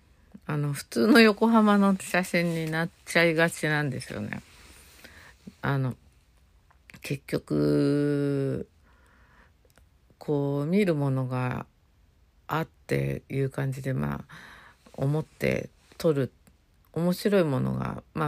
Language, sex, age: Japanese, female, 50-69